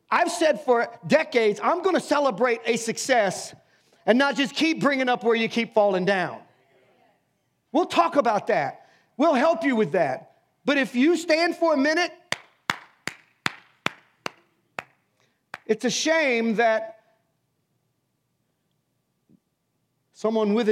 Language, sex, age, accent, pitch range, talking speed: English, male, 40-59, American, 185-255 Hz, 125 wpm